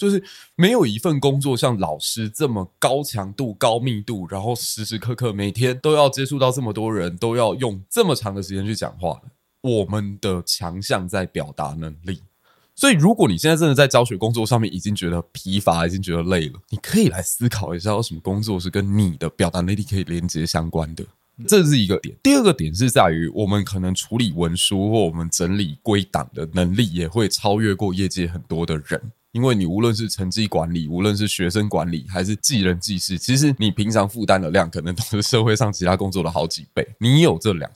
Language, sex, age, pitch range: Chinese, male, 20-39, 90-125 Hz